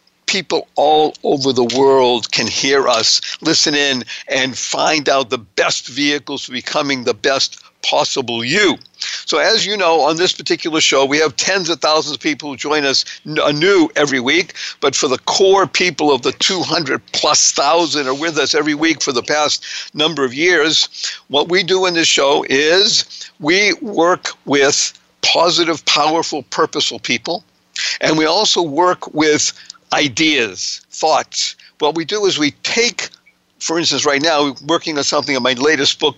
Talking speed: 170 wpm